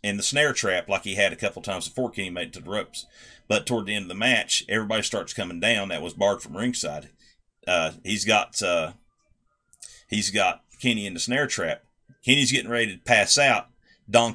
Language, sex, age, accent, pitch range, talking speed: English, male, 40-59, American, 110-135 Hz, 215 wpm